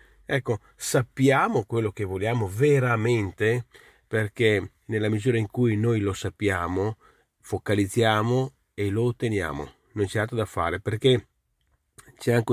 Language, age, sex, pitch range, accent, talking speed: Italian, 40-59, male, 100-135 Hz, native, 125 wpm